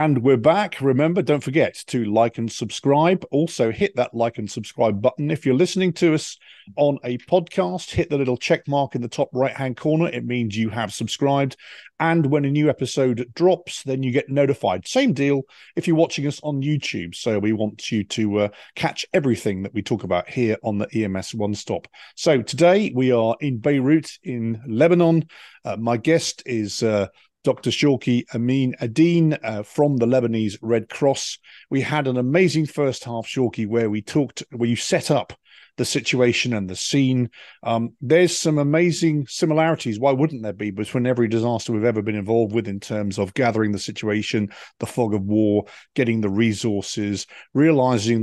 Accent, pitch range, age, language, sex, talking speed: British, 110-145 Hz, 40-59, English, male, 185 wpm